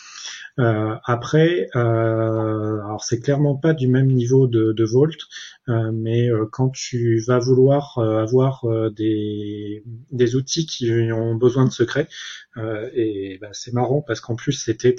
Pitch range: 115-130 Hz